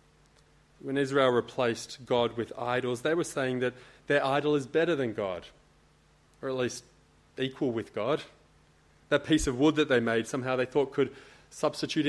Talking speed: 170 wpm